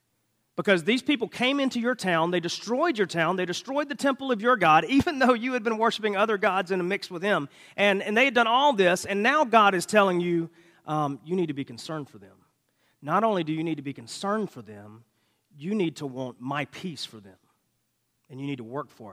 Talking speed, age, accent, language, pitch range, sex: 240 wpm, 30-49, American, English, 130-195 Hz, male